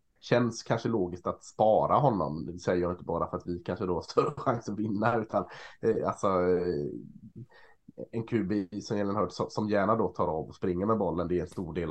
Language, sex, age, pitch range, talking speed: Swedish, male, 20-39, 85-115 Hz, 210 wpm